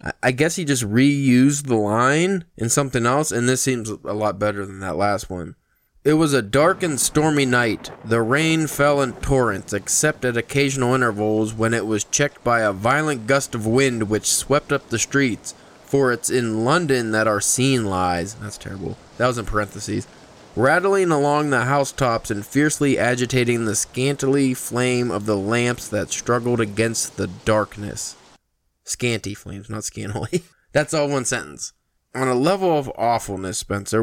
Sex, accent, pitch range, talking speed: male, American, 105-135 Hz, 170 wpm